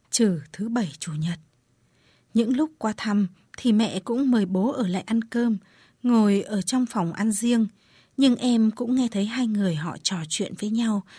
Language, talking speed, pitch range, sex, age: Vietnamese, 195 wpm, 185-245 Hz, female, 20-39